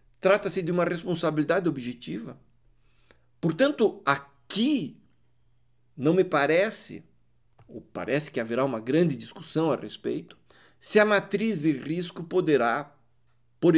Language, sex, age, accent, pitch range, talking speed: Portuguese, male, 50-69, Brazilian, 130-170 Hz, 115 wpm